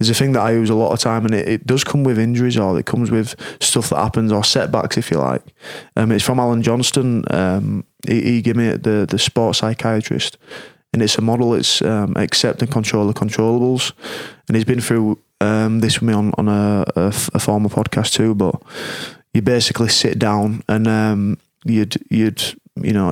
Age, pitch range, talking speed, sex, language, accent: 20-39, 105-115 Hz, 210 wpm, male, English, British